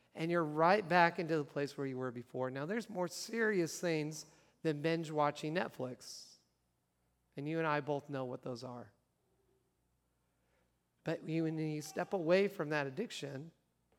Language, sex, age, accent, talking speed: English, male, 40-59, American, 155 wpm